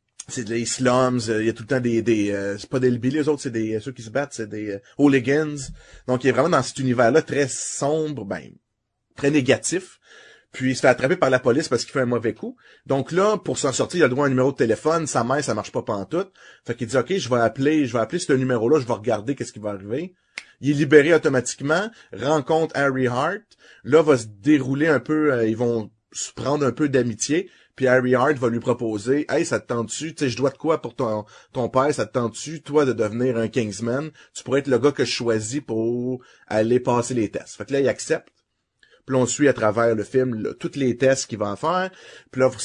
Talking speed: 255 wpm